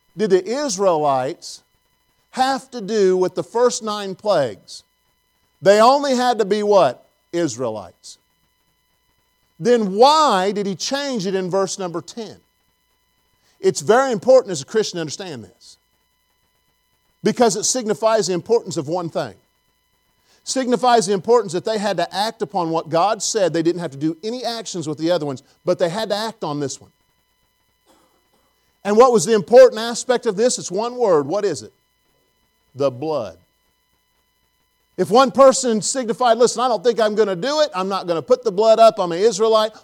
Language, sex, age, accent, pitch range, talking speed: English, male, 50-69, American, 160-230 Hz, 175 wpm